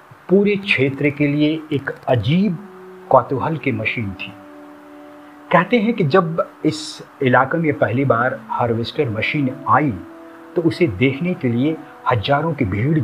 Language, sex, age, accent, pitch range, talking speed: Hindi, male, 50-69, native, 120-170 Hz, 140 wpm